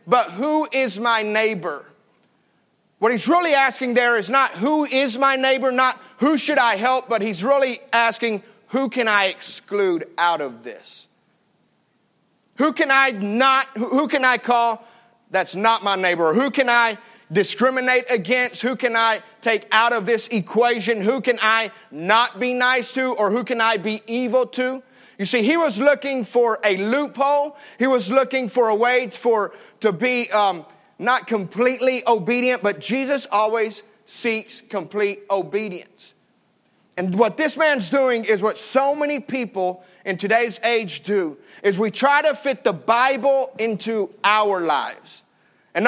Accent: American